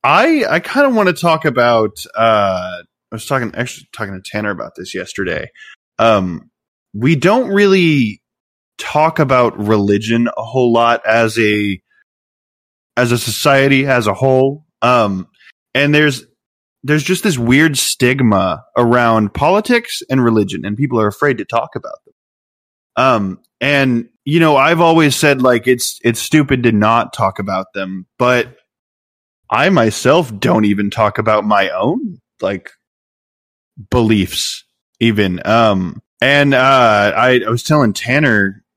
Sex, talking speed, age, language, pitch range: male, 145 wpm, 20-39, English, 105-145 Hz